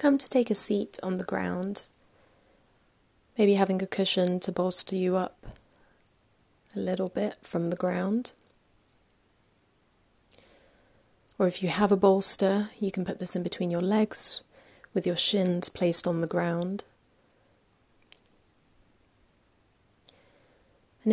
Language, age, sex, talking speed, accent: English, 30-49, female, 125 wpm, British